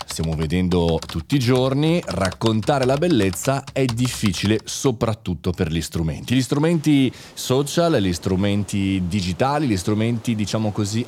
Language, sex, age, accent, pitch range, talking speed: Italian, male, 30-49, native, 100-140 Hz, 130 wpm